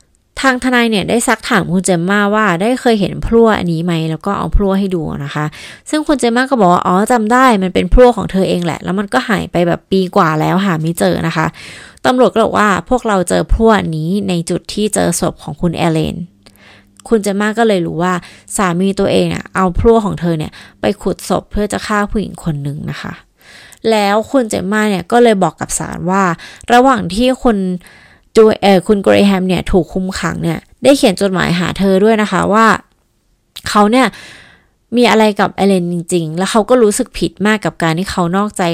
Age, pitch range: 20-39, 175-225 Hz